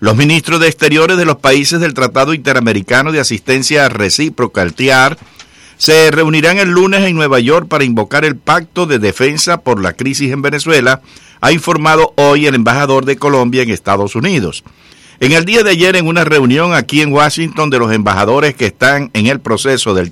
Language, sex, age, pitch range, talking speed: English, male, 60-79, 130-160 Hz, 190 wpm